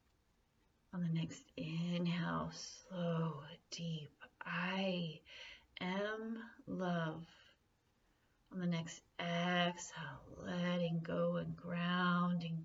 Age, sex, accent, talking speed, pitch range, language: 30-49, female, American, 80 wpm, 165-190 Hz, English